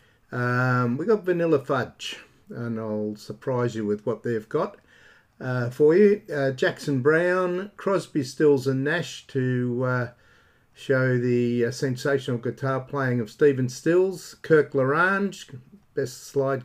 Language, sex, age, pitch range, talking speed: English, male, 50-69, 120-150 Hz, 135 wpm